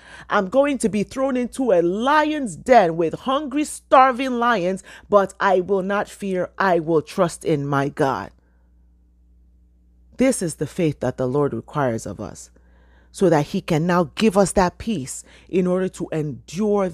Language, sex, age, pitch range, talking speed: English, female, 40-59, 120-200 Hz, 165 wpm